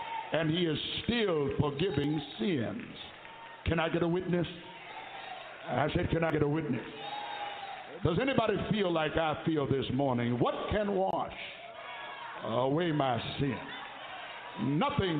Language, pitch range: English, 140-175 Hz